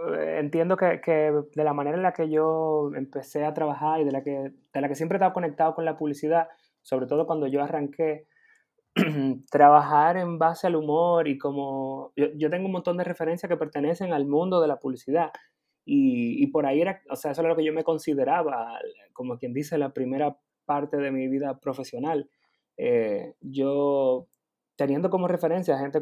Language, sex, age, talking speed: Spanish, male, 20-39, 195 wpm